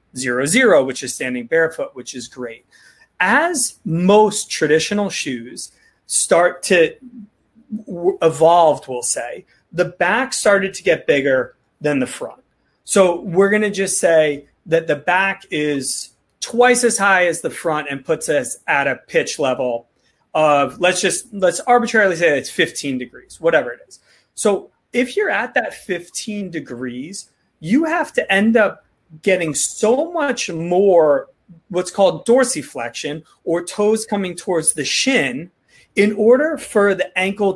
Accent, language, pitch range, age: American, English, 160-230 Hz, 30-49